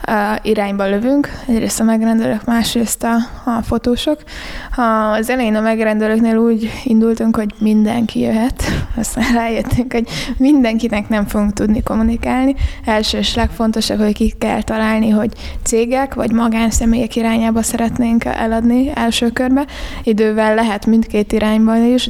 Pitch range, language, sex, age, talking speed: 220-235 Hz, Hungarian, female, 20-39, 130 wpm